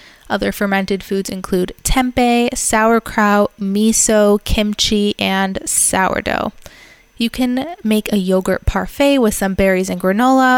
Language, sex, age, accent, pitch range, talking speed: English, female, 20-39, American, 190-230 Hz, 120 wpm